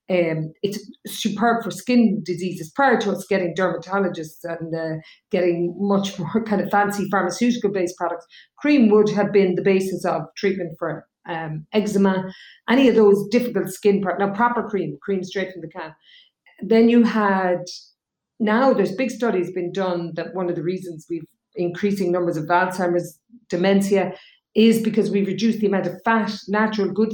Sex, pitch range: female, 175-215 Hz